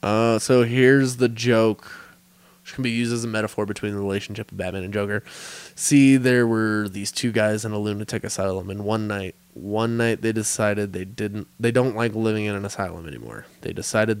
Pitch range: 105-130 Hz